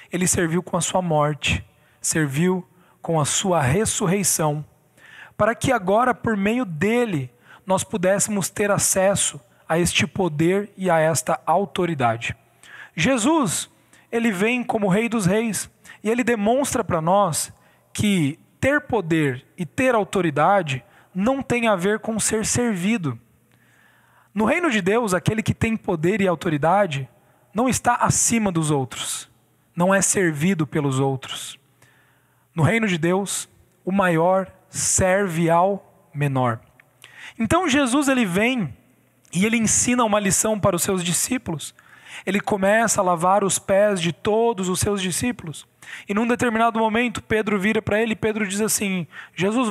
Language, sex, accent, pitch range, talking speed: Portuguese, male, Brazilian, 165-220 Hz, 145 wpm